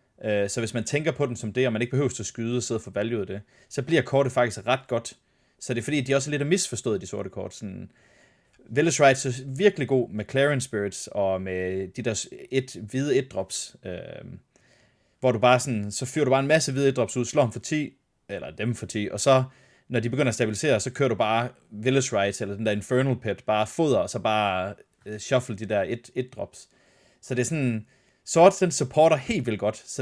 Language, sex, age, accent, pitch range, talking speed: Danish, male, 30-49, native, 105-130 Hz, 220 wpm